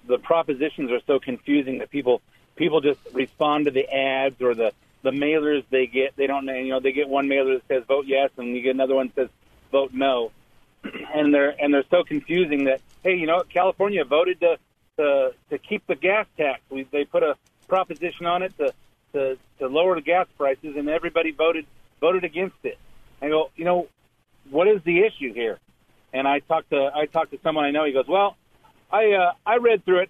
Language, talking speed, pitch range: English, 215 wpm, 135-180 Hz